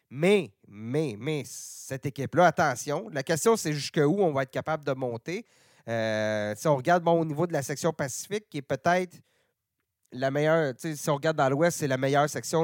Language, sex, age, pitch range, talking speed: French, male, 30-49, 135-175 Hz, 195 wpm